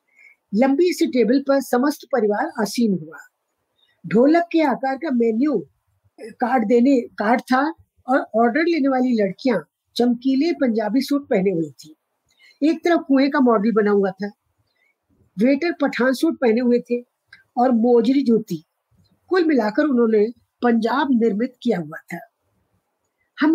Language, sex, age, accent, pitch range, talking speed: Hindi, female, 50-69, native, 215-285 Hz, 135 wpm